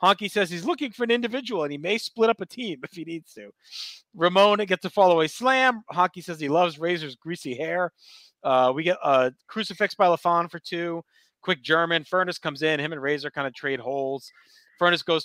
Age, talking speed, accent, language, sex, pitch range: 40-59, 215 wpm, American, English, male, 145-185 Hz